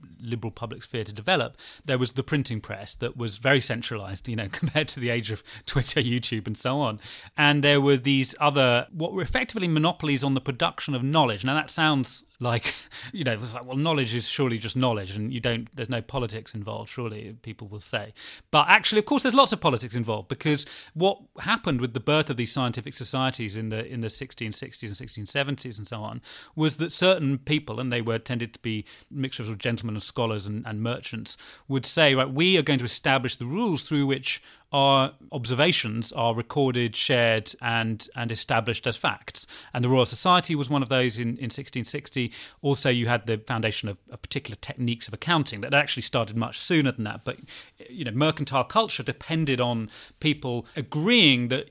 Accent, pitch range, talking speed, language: British, 115-145 Hz, 205 wpm, English